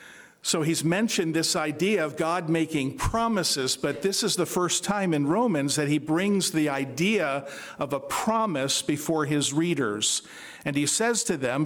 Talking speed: 170 wpm